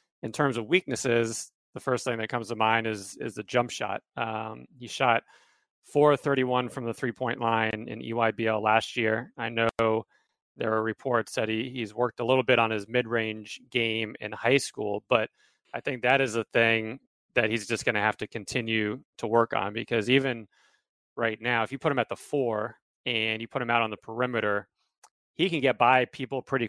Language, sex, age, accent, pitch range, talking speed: English, male, 30-49, American, 110-125 Hz, 200 wpm